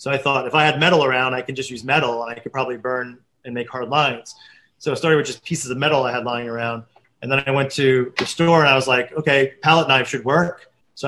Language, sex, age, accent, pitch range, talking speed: English, male, 30-49, American, 125-150 Hz, 275 wpm